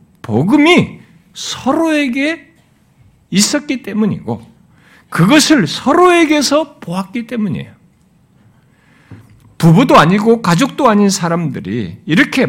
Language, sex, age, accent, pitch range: Korean, male, 60-79, native, 160-245 Hz